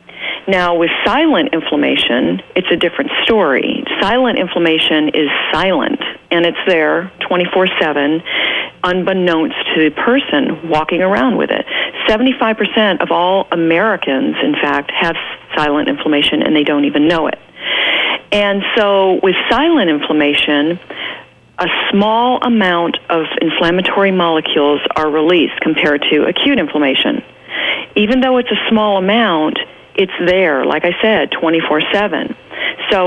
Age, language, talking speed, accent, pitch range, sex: 40-59, English, 125 wpm, American, 155-200 Hz, female